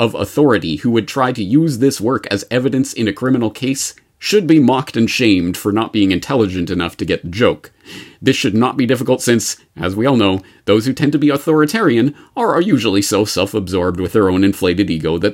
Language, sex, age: English, male, 40-59